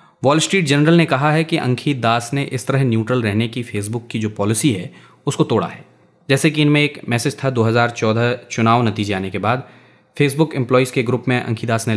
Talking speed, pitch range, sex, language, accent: 215 wpm, 115-145 Hz, male, Hindi, native